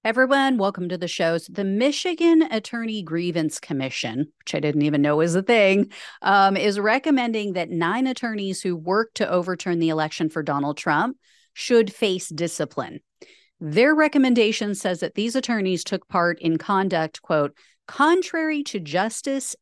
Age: 40-59